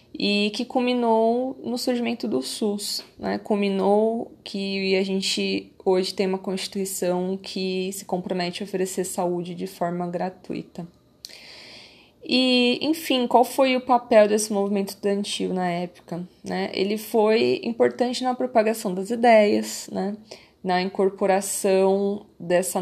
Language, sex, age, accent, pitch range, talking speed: Portuguese, female, 20-39, Brazilian, 185-220 Hz, 125 wpm